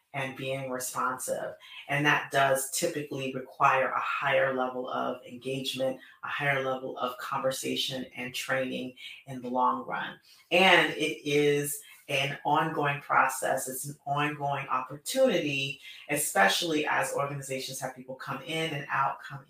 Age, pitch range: 30-49, 130-155 Hz